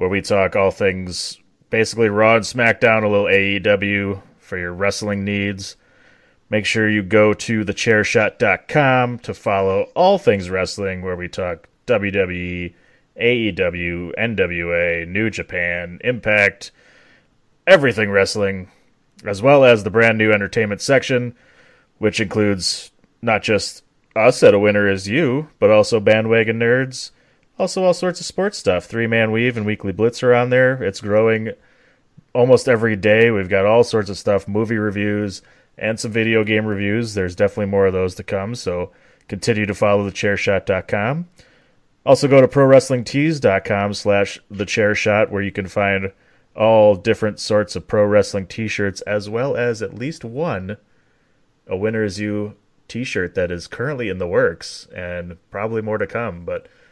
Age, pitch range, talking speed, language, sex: 30-49, 100-120 Hz, 150 wpm, English, male